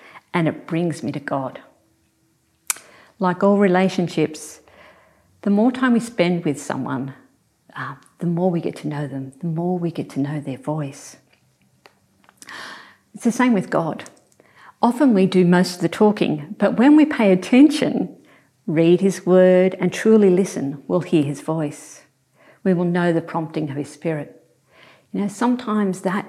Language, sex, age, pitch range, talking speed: English, female, 50-69, 150-195 Hz, 160 wpm